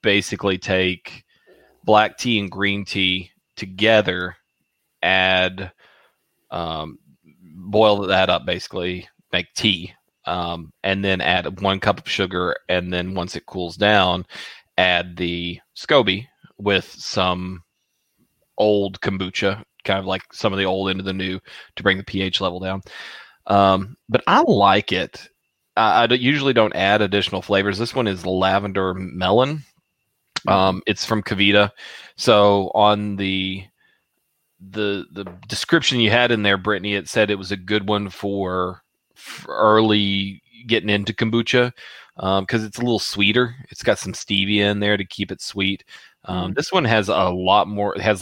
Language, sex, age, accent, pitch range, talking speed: English, male, 30-49, American, 95-105 Hz, 155 wpm